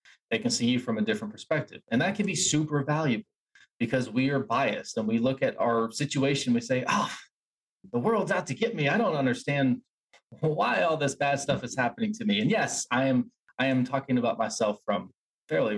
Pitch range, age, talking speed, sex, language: 125-170 Hz, 20-39, 215 wpm, male, English